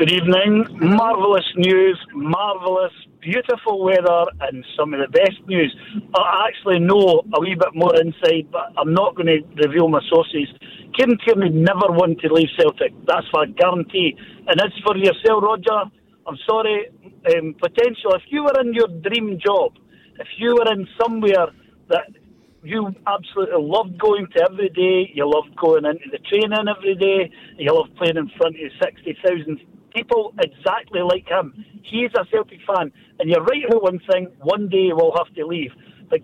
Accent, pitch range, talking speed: British, 175-220 Hz, 170 wpm